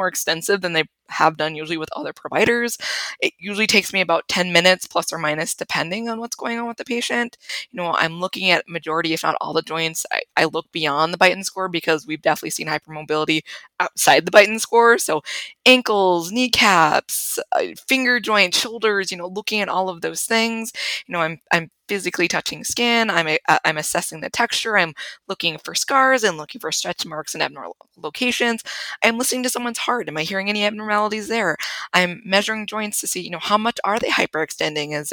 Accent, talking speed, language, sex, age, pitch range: American, 200 wpm, English, female, 20-39, 160-220 Hz